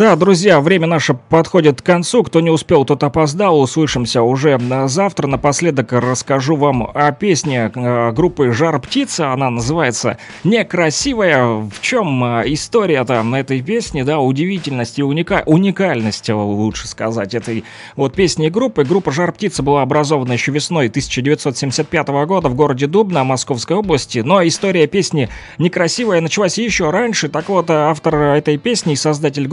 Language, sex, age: Russian, male, 30-49